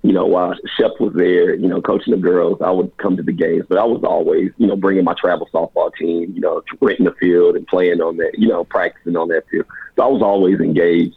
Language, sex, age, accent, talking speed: English, male, 40-59, American, 265 wpm